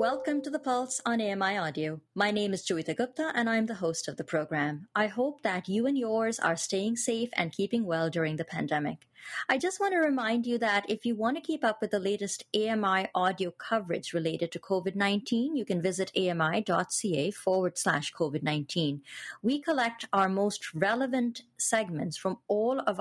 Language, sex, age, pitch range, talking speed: English, female, 30-49, 175-235 Hz, 185 wpm